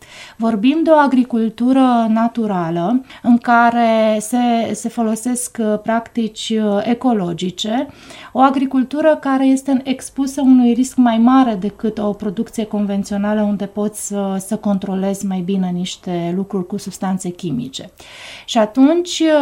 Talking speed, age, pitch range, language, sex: 115 wpm, 30-49, 205-260 Hz, Romanian, female